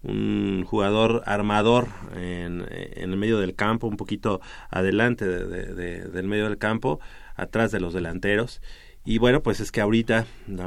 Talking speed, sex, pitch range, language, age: 170 wpm, male, 95-115 Hz, Spanish, 30-49